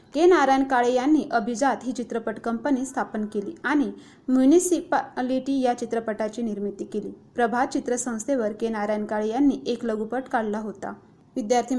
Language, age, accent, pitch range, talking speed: Marathi, 20-39, native, 225-270 Hz, 135 wpm